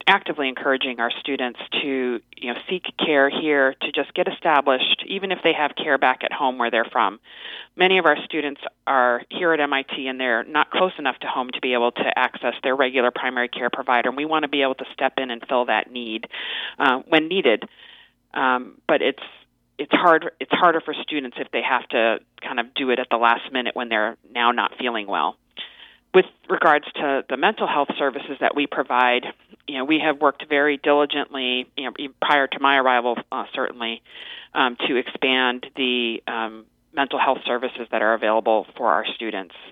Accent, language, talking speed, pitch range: American, English, 200 wpm, 120-145 Hz